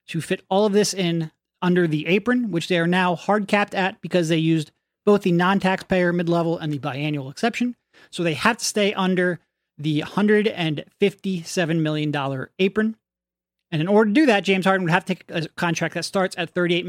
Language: English